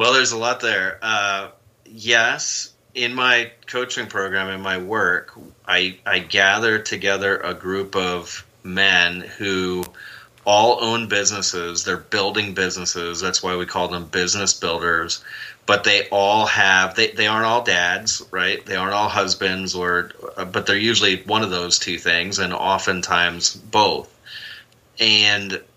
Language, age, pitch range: English, 30-49, 90-105 Hz